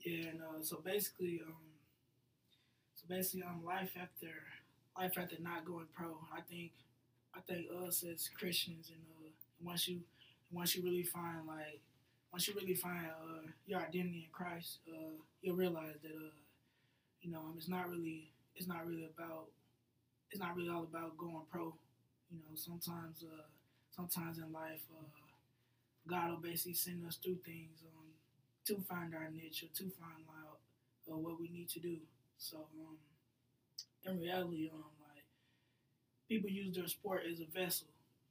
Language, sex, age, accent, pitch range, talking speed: English, male, 20-39, American, 150-170 Hz, 165 wpm